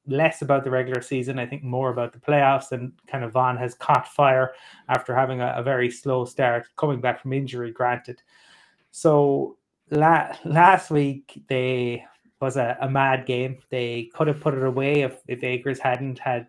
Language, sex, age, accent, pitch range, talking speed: English, male, 30-49, Irish, 125-140 Hz, 185 wpm